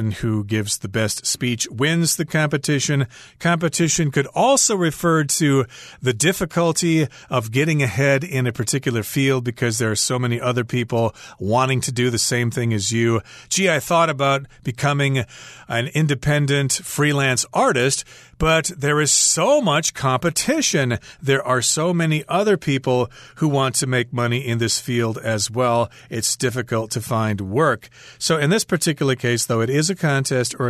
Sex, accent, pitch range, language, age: male, American, 115-155 Hz, Chinese, 40-59